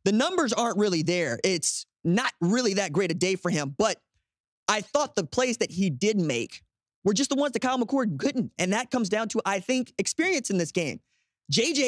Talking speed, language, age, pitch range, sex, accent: 215 wpm, English, 20-39, 165-215 Hz, male, American